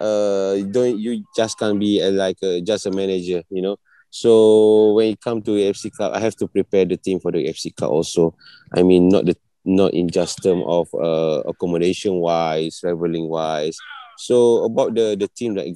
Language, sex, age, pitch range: English, male, 30-49, 90-115 Hz